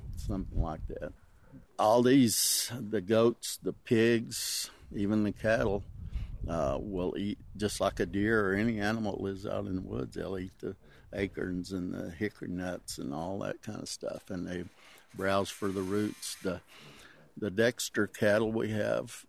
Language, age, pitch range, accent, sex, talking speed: English, 60-79, 90-105 Hz, American, male, 165 wpm